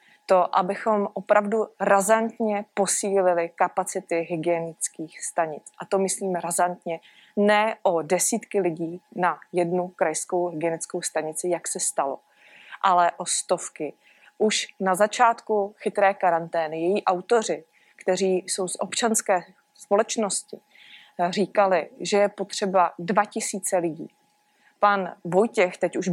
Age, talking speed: 20-39, 115 wpm